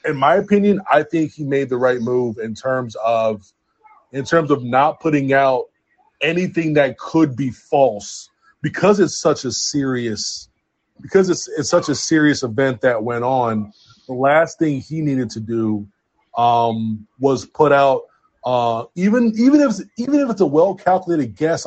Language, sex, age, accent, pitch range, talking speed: English, male, 30-49, American, 120-160 Hz, 170 wpm